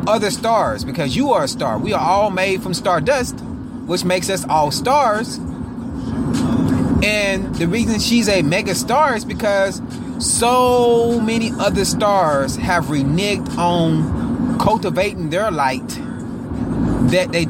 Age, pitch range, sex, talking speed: 30-49, 175-235 Hz, male, 135 wpm